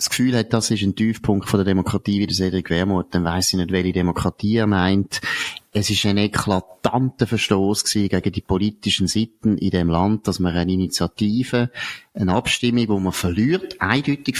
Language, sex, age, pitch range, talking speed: German, male, 30-49, 95-110 Hz, 180 wpm